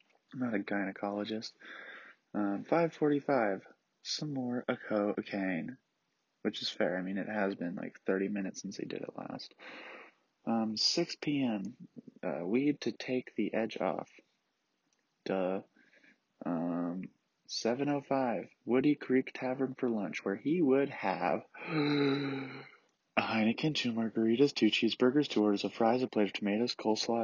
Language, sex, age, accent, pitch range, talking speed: English, male, 20-39, American, 100-140 Hz, 135 wpm